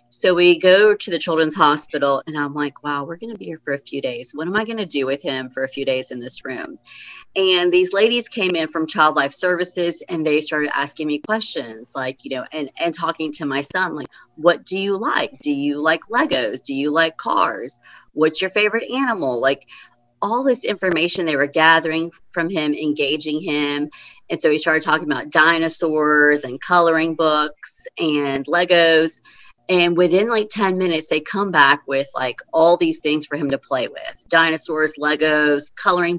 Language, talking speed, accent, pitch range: English, 200 wpm, American, 150-185 Hz